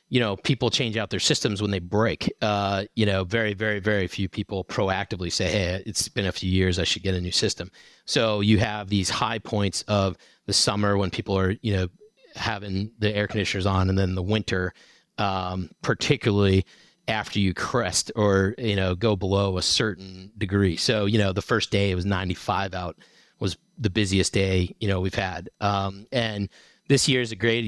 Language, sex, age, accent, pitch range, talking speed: English, male, 30-49, American, 95-110 Hz, 200 wpm